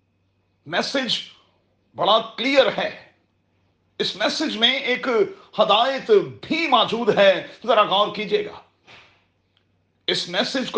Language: Urdu